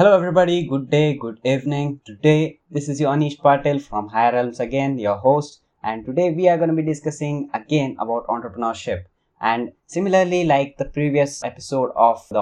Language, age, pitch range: English, 20-39, 115-145 Hz